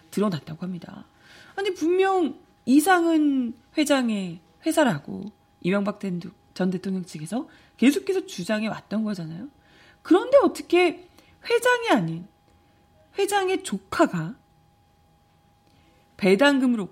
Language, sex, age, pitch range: Korean, female, 30-49, 185-285 Hz